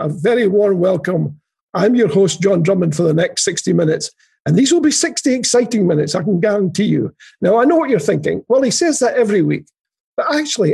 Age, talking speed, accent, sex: 50-69, 220 wpm, British, male